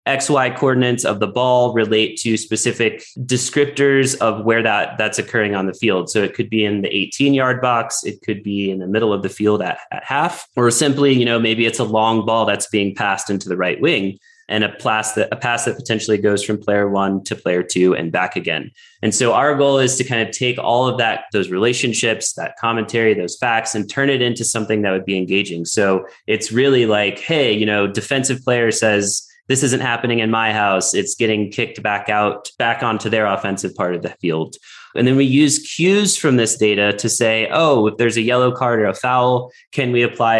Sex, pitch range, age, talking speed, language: male, 105-125 Hz, 20-39, 220 wpm, English